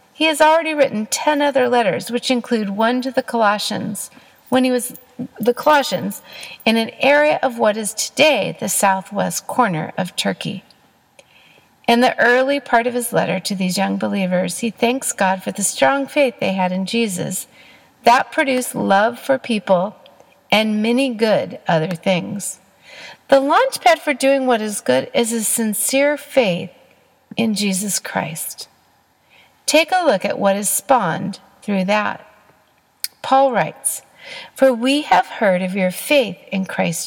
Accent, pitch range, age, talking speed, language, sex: American, 195-265 Hz, 50-69, 155 wpm, English, female